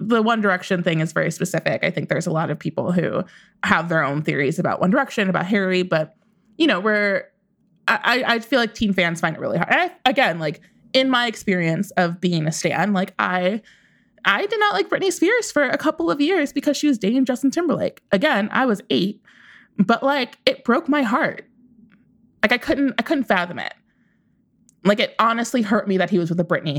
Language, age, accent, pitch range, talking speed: English, 20-39, American, 175-225 Hz, 215 wpm